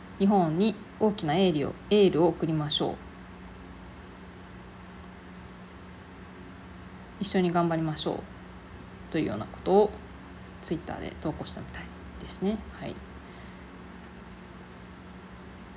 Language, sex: Japanese, female